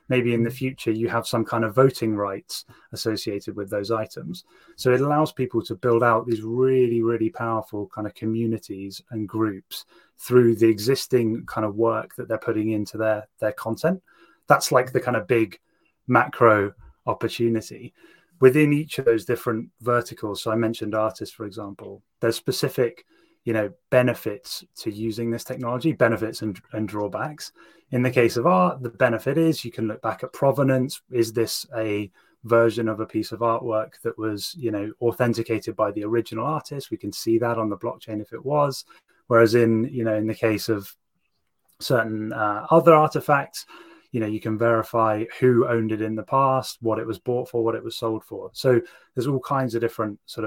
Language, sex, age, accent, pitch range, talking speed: English, male, 30-49, British, 110-130 Hz, 190 wpm